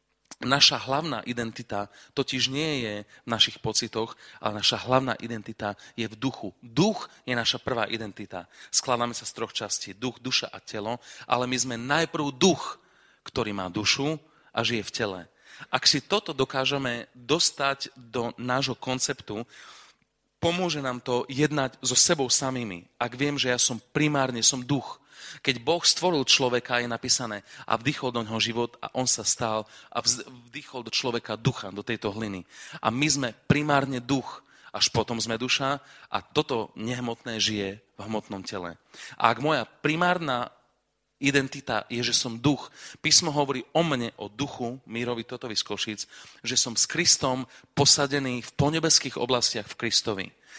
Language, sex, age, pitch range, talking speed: Czech, male, 30-49, 115-140 Hz, 155 wpm